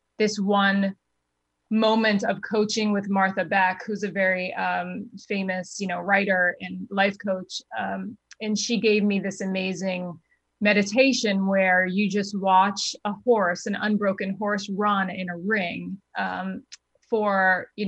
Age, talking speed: 30-49, 145 wpm